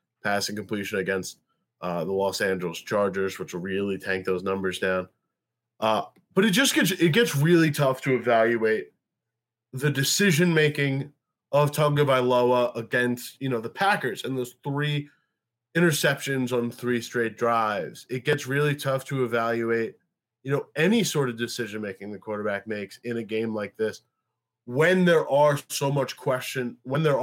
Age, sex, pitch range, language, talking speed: 20-39, male, 115-150 Hz, English, 160 wpm